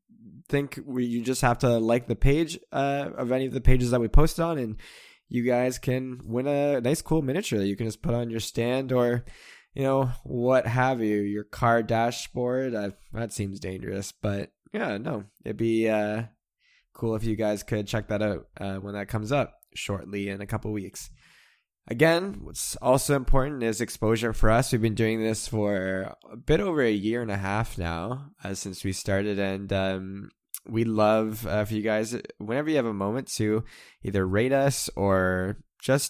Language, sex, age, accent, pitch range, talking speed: English, male, 10-29, American, 100-125 Hz, 200 wpm